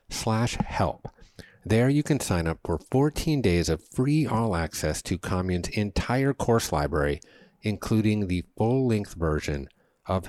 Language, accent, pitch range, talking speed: English, American, 80-115 Hz, 140 wpm